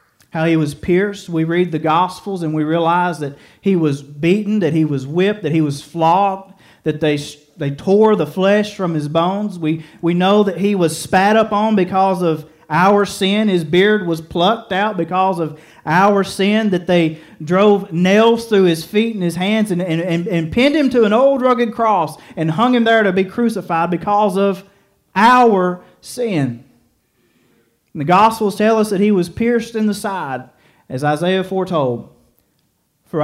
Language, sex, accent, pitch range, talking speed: English, male, American, 155-200 Hz, 180 wpm